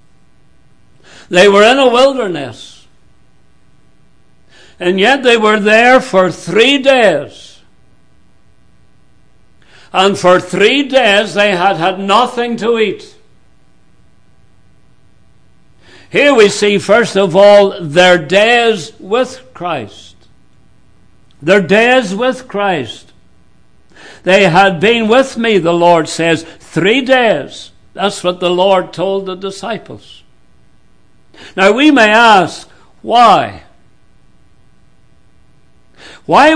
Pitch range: 180-230 Hz